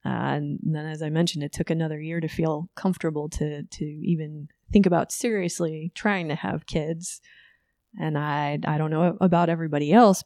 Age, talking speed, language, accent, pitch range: 30-49, 180 wpm, English, American, 160-190 Hz